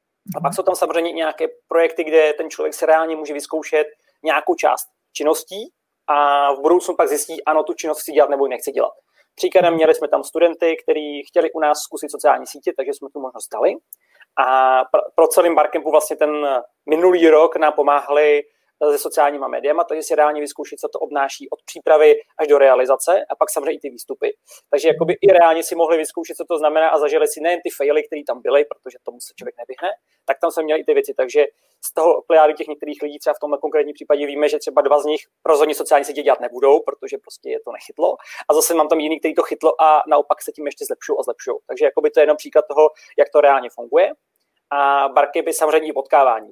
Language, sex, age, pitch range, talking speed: Czech, male, 30-49, 150-190 Hz, 215 wpm